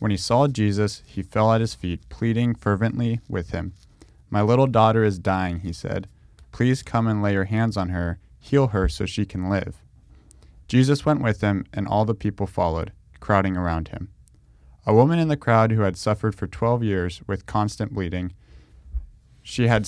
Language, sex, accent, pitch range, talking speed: English, male, American, 90-115 Hz, 185 wpm